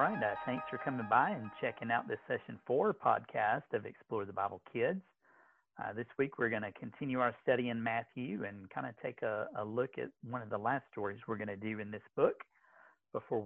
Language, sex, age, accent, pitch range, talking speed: English, male, 40-59, American, 105-125 Hz, 220 wpm